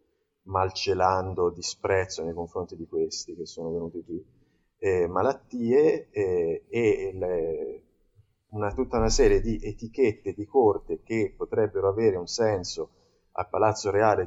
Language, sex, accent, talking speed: Italian, male, native, 130 wpm